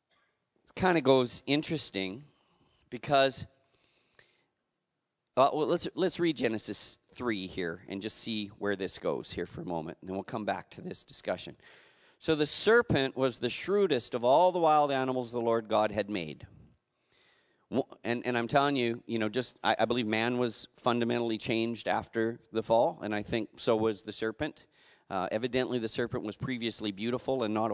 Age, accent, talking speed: 40-59, American, 175 wpm